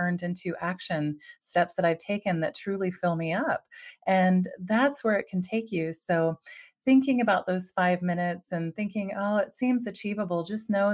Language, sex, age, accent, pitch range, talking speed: English, female, 30-49, American, 175-220 Hz, 175 wpm